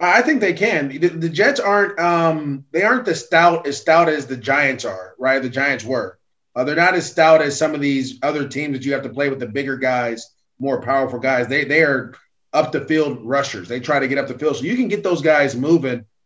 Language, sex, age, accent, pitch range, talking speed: English, male, 30-49, American, 130-160 Hz, 245 wpm